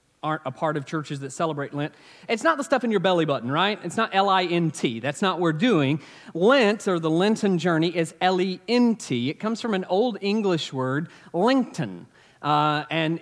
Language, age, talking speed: English, 40-59, 185 wpm